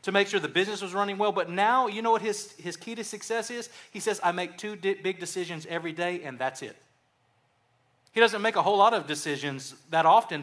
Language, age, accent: English, 30-49, American